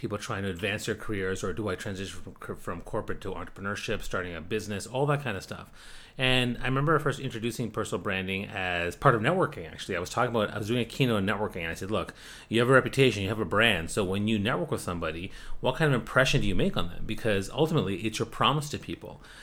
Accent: American